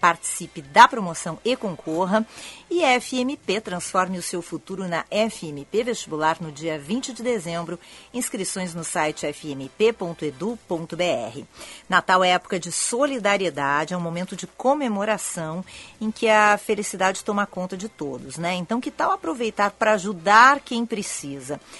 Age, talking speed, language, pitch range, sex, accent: 40-59, 140 wpm, Portuguese, 165-215 Hz, female, Brazilian